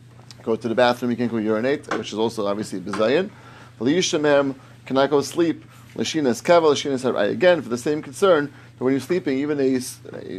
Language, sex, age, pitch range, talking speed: English, male, 30-49, 120-150 Hz, 175 wpm